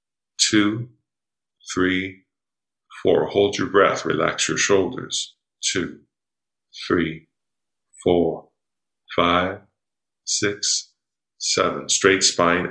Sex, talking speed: male, 80 wpm